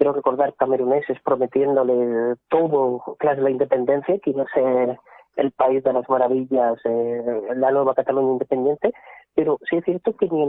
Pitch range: 140-165 Hz